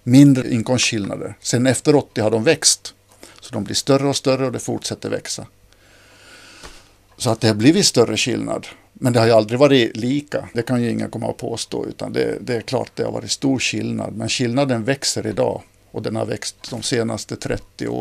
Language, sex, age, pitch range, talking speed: Swedish, male, 50-69, 110-130 Hz, 205 wpm